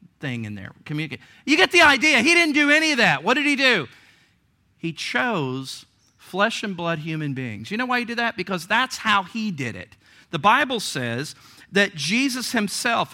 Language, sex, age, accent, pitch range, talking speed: English, male, 50-69, American, 130-180 Hz, 195 wpm